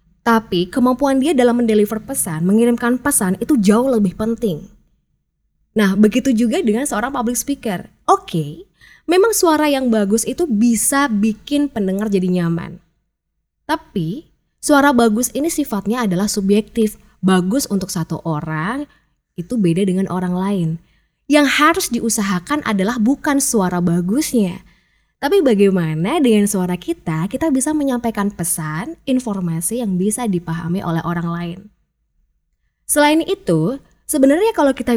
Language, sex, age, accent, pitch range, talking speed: Indonesian, female, 20-39, native, 180-260 Hz, 130 wpm